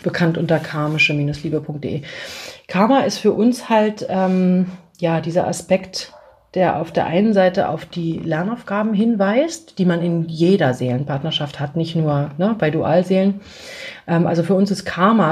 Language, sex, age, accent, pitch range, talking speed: German, female, 30-49, German, 155-190 Hz, 140 wpm